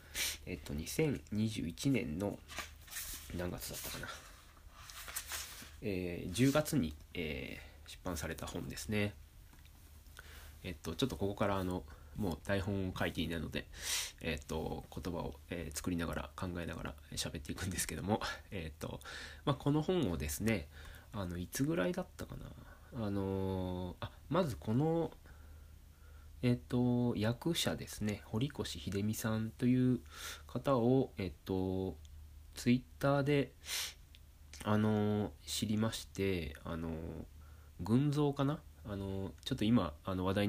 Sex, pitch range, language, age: male, 75-105 Hz, Japanese, 20-39